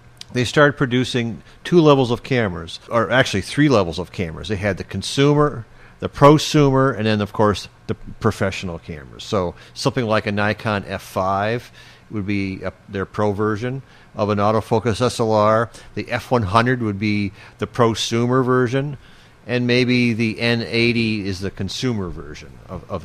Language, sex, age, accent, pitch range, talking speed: English, male, 50-69, American, 100-120 Hz, 150 wpm